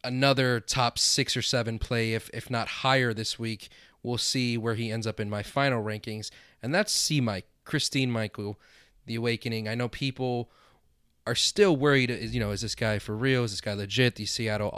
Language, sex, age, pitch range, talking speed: English, male, 30-49, 105-125 Hz, 200 wpm